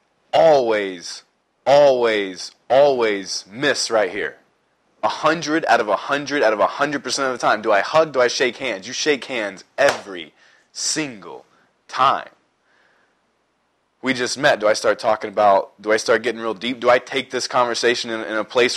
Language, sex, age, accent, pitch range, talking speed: English, male, 20-39, American, 110-140 Hz, 180 wpm